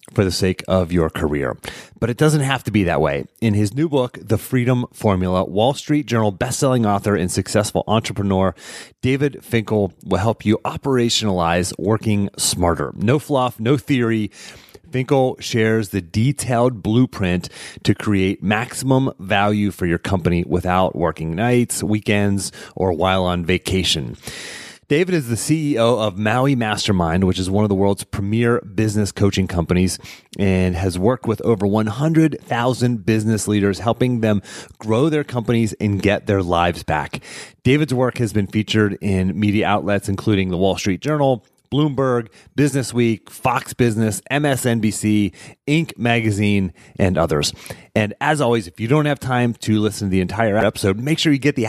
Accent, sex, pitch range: American, male, 95-125 Hz